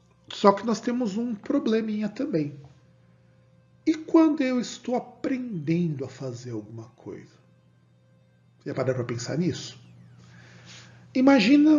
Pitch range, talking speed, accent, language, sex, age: 130-215 Hz, 115 wpm, Brazilian, Portuguese, male, 40-59